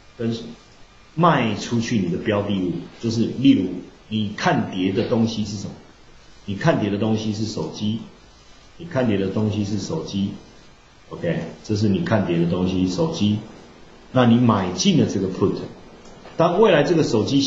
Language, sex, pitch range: Chinese, male, 100-135 Hz